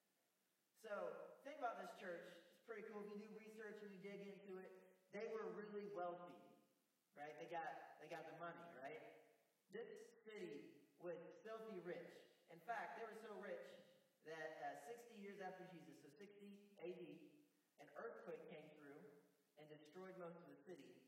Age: 40-59